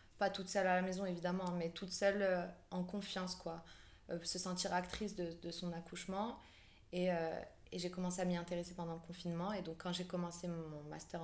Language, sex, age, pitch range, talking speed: French, female, 20-39, 155-180 Hz, 215 wpm